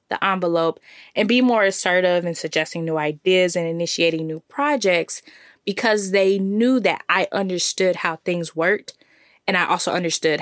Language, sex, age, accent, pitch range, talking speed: English, female, 20-39, American, 170-210 Hz, 155 wpm